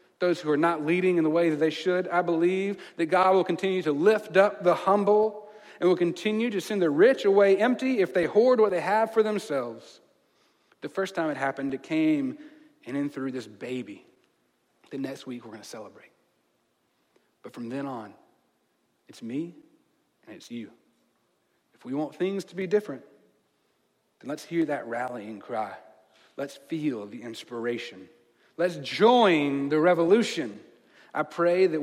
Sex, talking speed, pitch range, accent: male, 170 wpm, 135-185 Hz, American